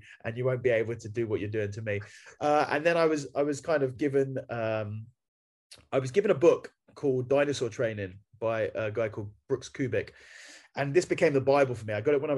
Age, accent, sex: 20-39, British, male